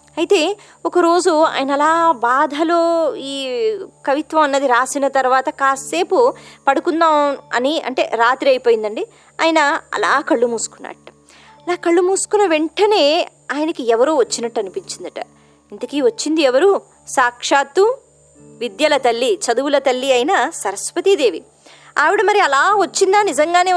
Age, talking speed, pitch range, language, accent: 20-39, 105 wpm, 255-360 Hz, Telugu, native